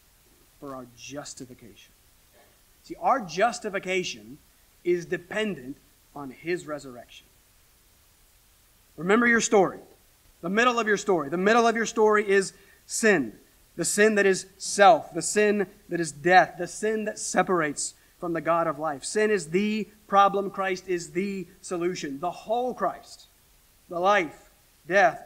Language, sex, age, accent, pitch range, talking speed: English, male, 40-59, American, 155-210 Hz, 140 wpm